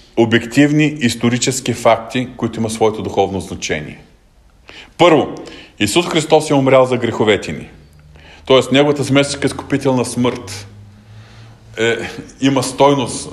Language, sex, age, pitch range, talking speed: Bulgarian, male, 40-59, 115-155 Hz, 110 wpm